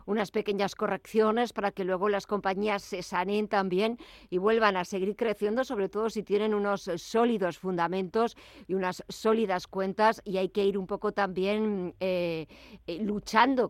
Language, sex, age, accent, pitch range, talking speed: Spanish, female, 50-69, Spanish, 195-230 Hz, 160 wpm